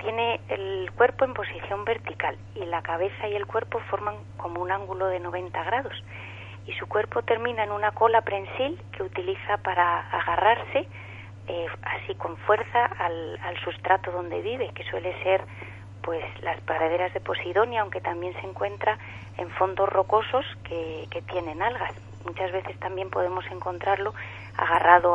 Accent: Spanish